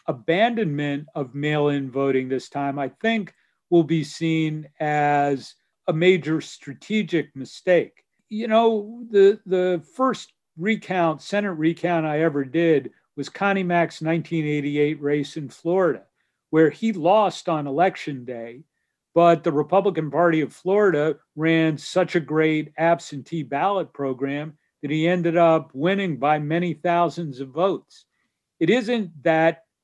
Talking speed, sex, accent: 135 wpm, male, American